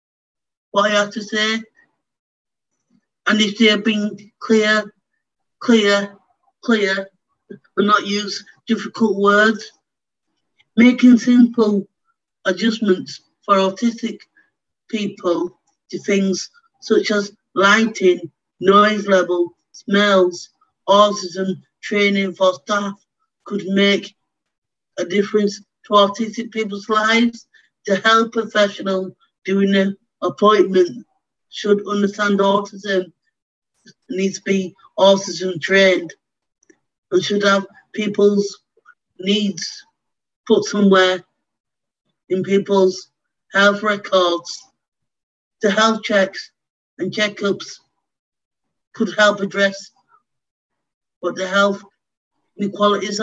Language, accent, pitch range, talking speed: English, British, 195-220 Hz, 90 wpm